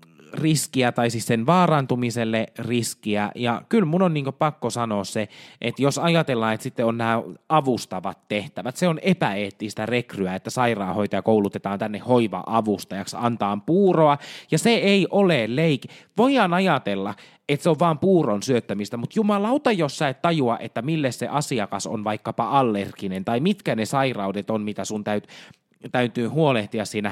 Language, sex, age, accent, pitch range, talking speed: Finnish, male, 20-39, native, 110-165 Hz, 155 wpm